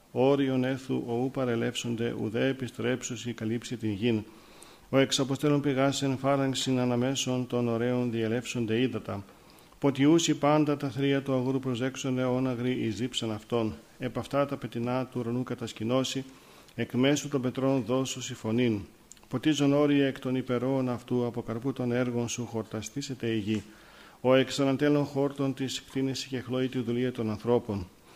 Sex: male